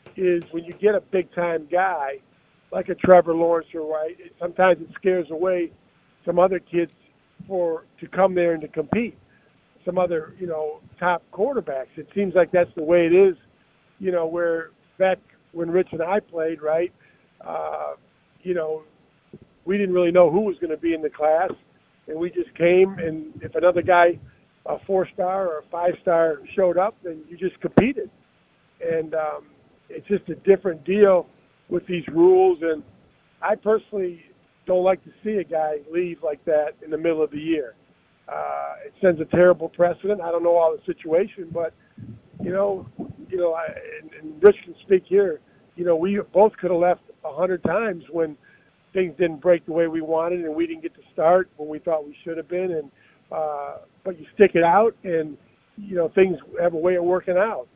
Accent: American